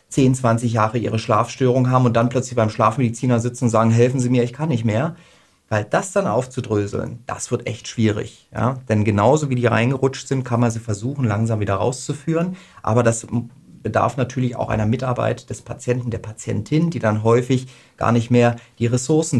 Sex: male